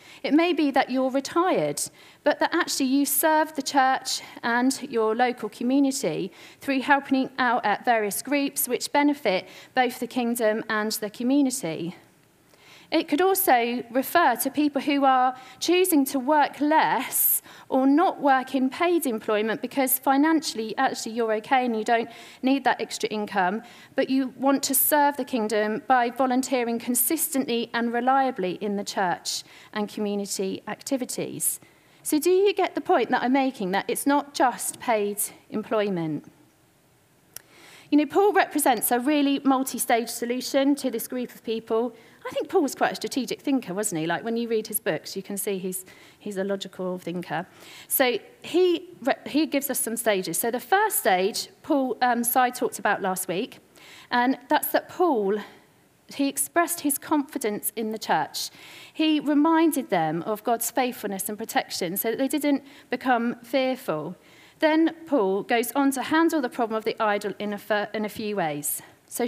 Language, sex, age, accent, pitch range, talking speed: English, female, 40-59, British, 215-290 Hz, 165 wpm